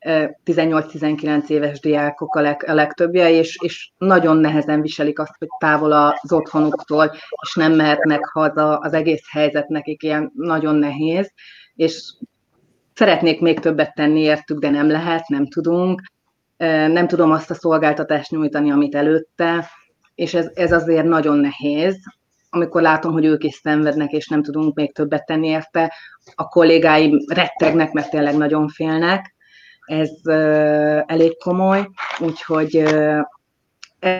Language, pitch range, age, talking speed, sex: Hungarian, 150-165 Hz, 30-49, 135 wpm, female